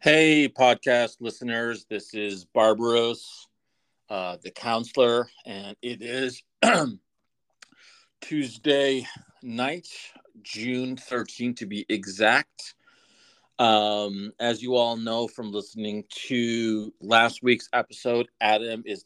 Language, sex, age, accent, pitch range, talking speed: English, male, 40-59, American, 100-120 Hz, 100 wpm